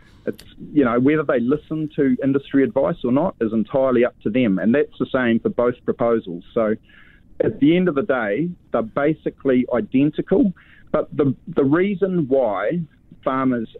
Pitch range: 115-145 Hz